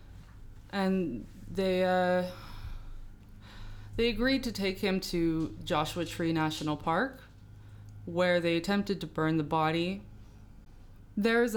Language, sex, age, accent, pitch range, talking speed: English, female, 20-39, American, 105-170 Hz, 110 wpm